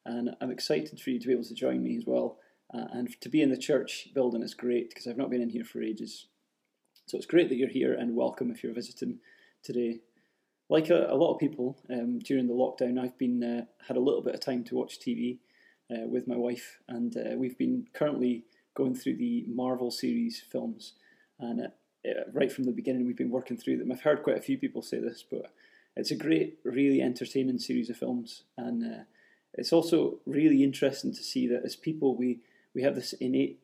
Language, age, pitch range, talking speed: English, 20-39, 120-140 Hz, 220 wpm